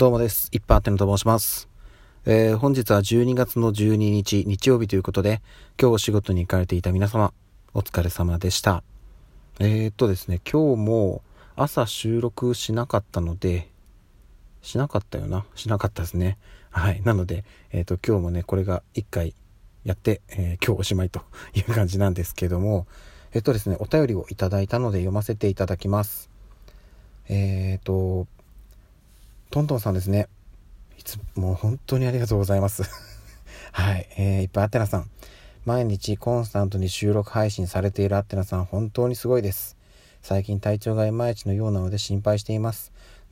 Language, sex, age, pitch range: Japanese, male, 40-59, 95-110 Hz